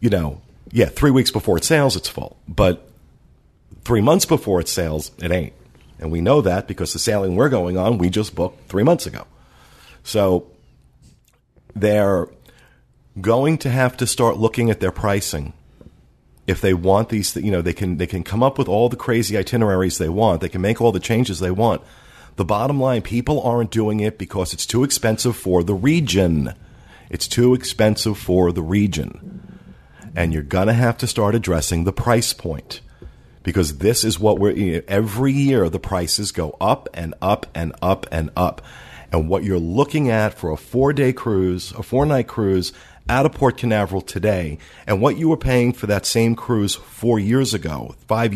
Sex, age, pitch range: male, 50-69, 90-120 Hz